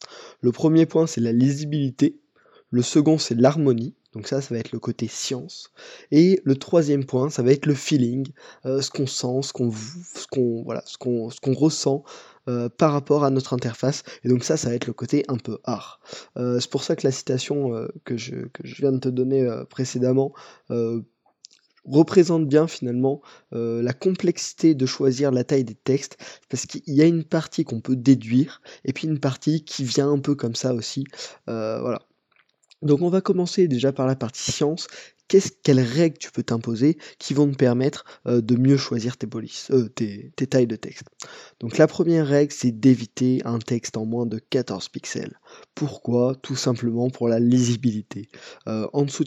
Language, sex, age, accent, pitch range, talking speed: French, male, 20-39, French, 120-145 Hz, 195 wpm